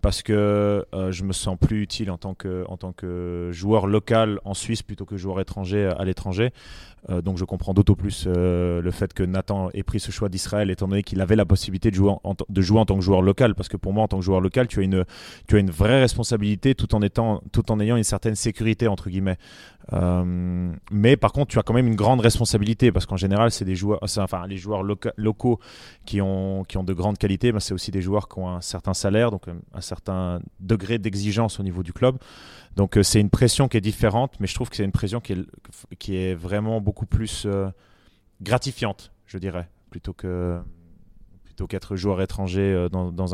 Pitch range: 90-105 Hz